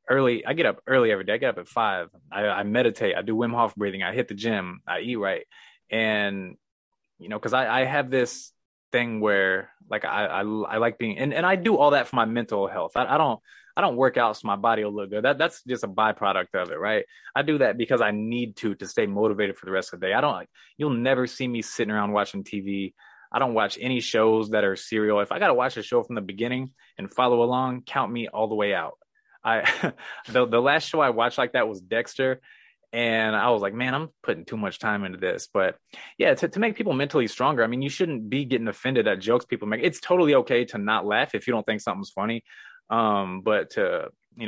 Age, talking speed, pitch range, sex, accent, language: 20-39, 250 wpm, 105-130 Hz, male, American, English